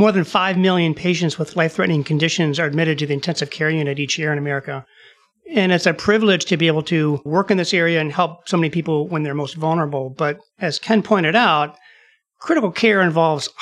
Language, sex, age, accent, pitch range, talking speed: English, male, 40-59, American, 150-185 Hz, 210 wpm